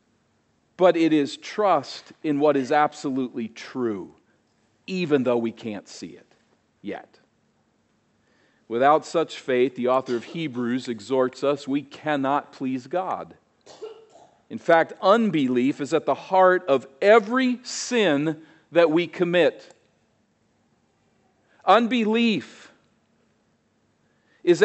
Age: 50-69